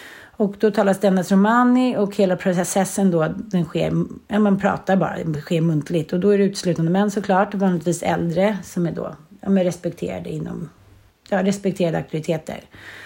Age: 40-59